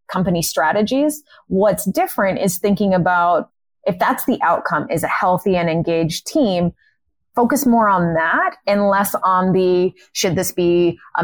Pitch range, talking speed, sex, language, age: 170-225 Hz, 155 wpm, female, English, 20-39